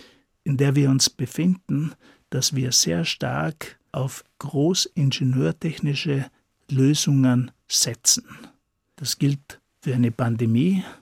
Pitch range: 125-150 Hz